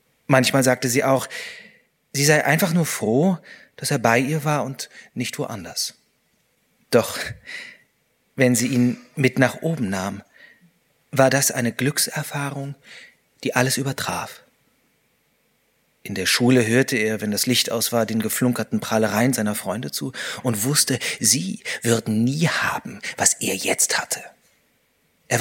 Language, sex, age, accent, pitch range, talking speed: German, male, 30-49, German, 115-150 Hz, 140 wpm